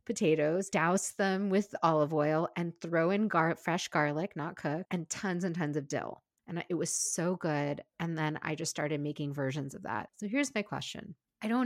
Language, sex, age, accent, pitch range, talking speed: English, female, 30-49, American, 150-190 Hz, 200 wpm